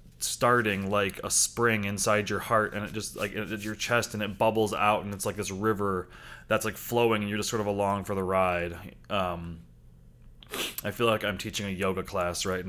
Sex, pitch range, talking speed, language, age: male, 100-115 Hz, 220 wpm, English, 20-39